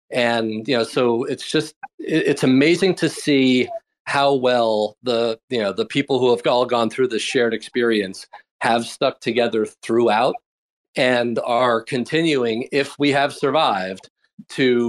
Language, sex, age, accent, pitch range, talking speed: English, male, 40-59, American, 110-125 Hz, 150 wpm